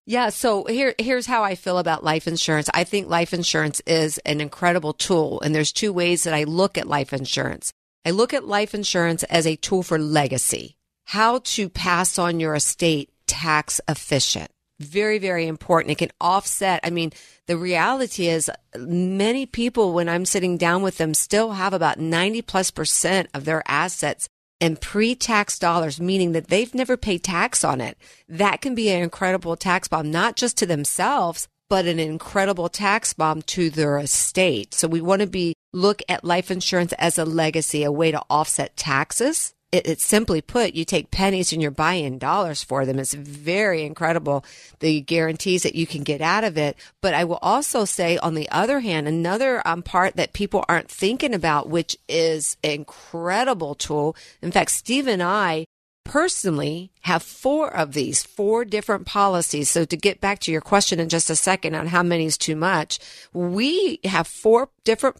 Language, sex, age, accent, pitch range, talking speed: English, female, 50-69, American, 155-200 Hz, 185 wpm